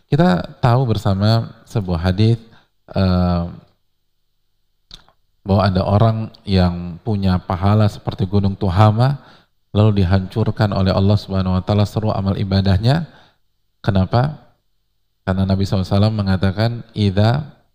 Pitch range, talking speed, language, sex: 95-115 Hz, 110 wpm, Indonesian, male